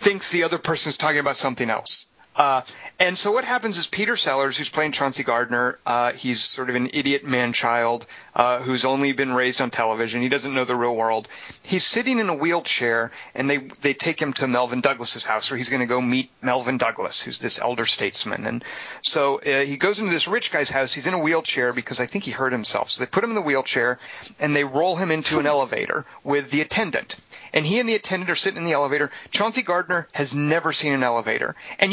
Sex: male